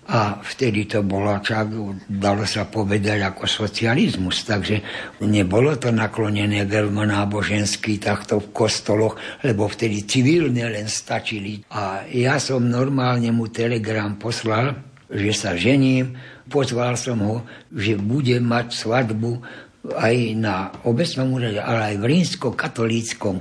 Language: Slovak